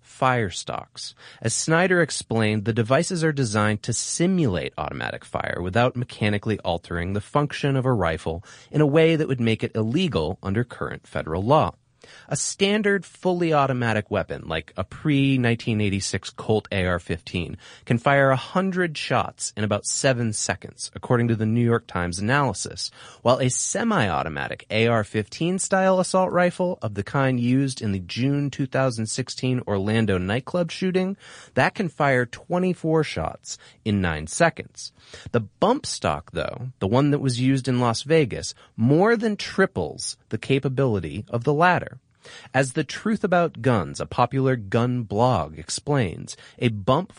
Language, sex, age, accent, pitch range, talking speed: English, male, 30-49, American, 105-150 Hz, 145 wpm